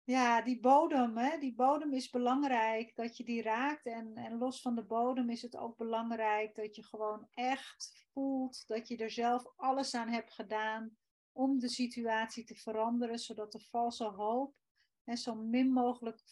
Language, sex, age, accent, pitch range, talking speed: Dutch, female, 30-49, Dutch, 225-265 Hz, 175 wpm